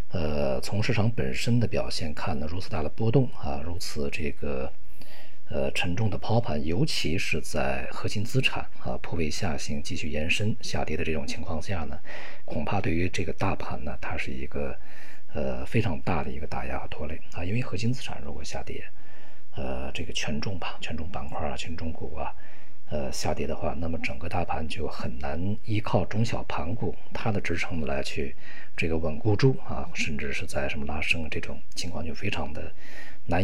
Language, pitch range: Chinese, 75-105 Hz